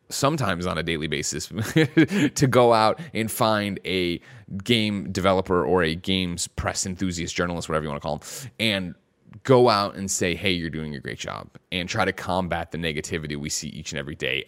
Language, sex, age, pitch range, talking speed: English, male, 30-49, 85-105 Hz, 200 wpm